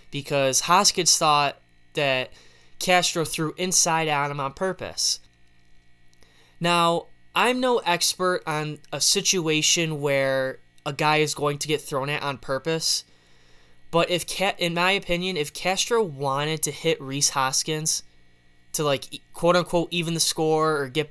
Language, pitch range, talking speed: English, 125-170 Hz, 140 wpm